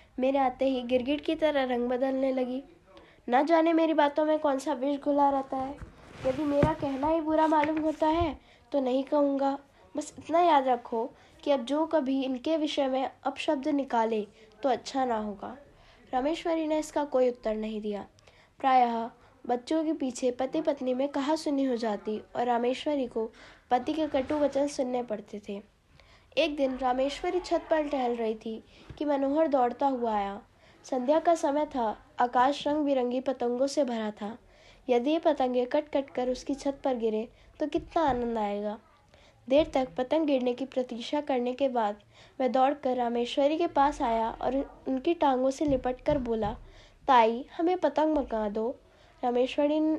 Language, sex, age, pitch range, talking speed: Hindi, female, 10-29, 245-300 Hz, 170 wpm